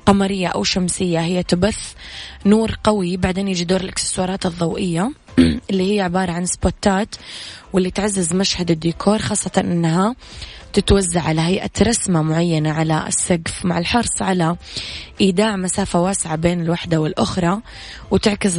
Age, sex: 20-39, female